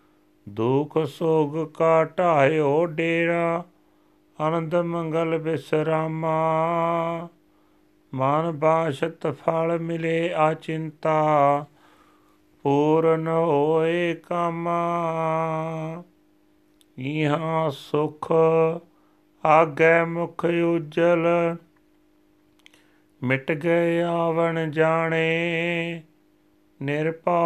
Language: Punjabi